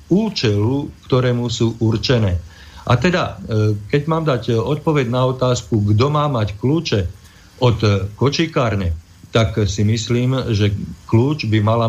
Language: Slovak